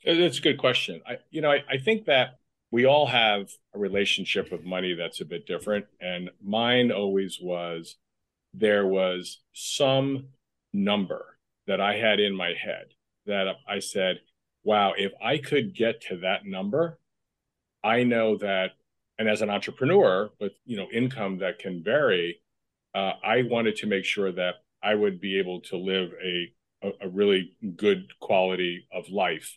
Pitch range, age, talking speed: 95-120 Hz, 40-59, 160 wpm